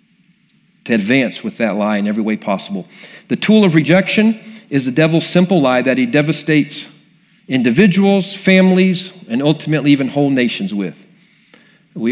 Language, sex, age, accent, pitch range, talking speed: English, male, 50-69, American, 145-200 Hz, 145 wpm